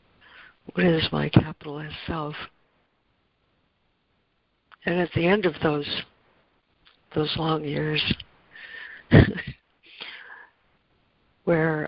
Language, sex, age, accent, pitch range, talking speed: English, female, 60-79, American, 145-165 Hz, 75 wpm